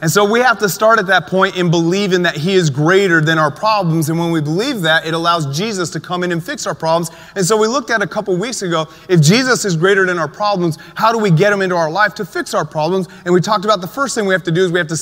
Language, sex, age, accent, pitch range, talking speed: English, male, 30-49, American, 170-205 Hz, 305 wpm